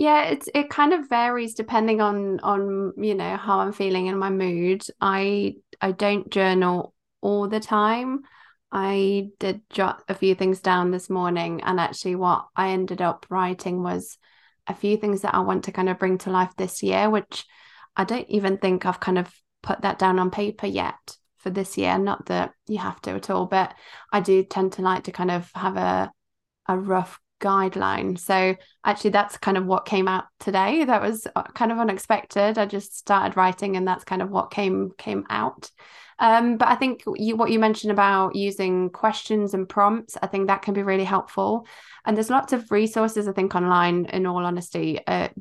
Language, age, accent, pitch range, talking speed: English, 20-39, British, 185-210 Hz, 200 wpm